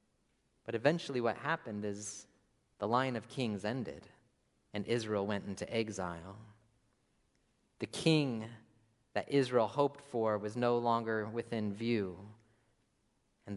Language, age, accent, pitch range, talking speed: English, 30-49, American, 105-140 Hz, 120 wpm